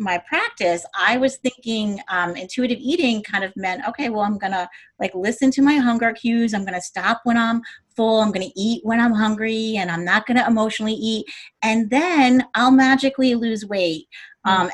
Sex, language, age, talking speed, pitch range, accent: female, English, 30-49, 185 wpm, 180-240 Hz, American